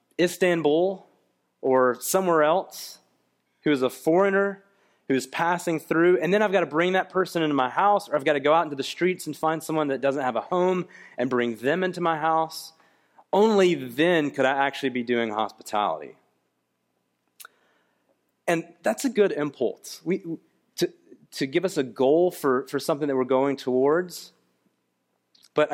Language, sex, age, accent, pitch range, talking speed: English, male, 30-49, American, 130-185 Hz, 175 wpm